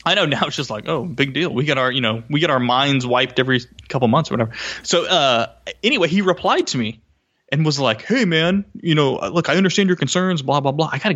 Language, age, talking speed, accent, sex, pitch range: English, 20-39, 260 wpm, American, male, 125-180 Hz